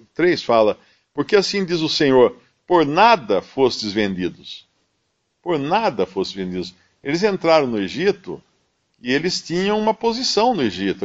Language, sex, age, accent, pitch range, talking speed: Portuguese, male, 50-69, Brazilian, 100-155 Hz, 140 wpm